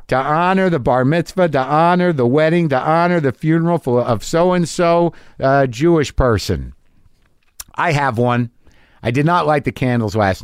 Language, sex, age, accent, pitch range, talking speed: English, male, 50-69, American, 115-160 Hz, 160 wpm